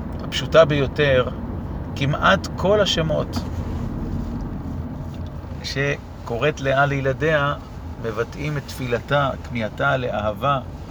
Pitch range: 115-145 Hz